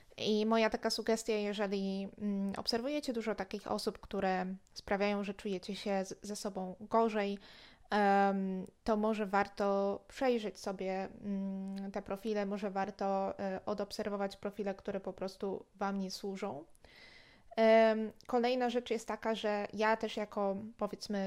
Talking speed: 120 wpm